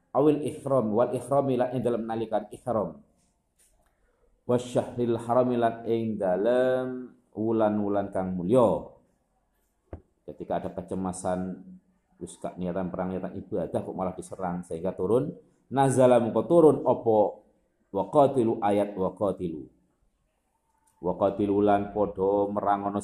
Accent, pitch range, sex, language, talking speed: native, 95-120 Hz, male, Indonesian, 100 wpm